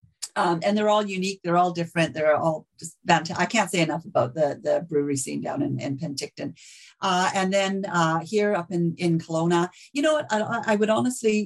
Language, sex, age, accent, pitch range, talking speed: English, female, 50-69, American, 160-190 Hz, 215 wpm